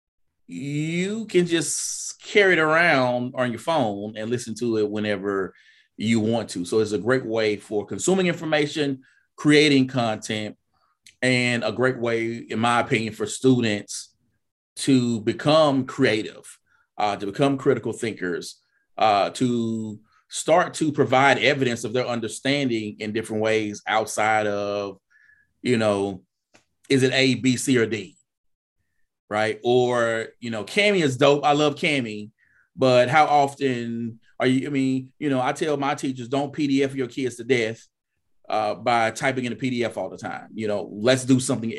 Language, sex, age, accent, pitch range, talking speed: English, male, 30-49, American, 105-140 Hz, 160 wpm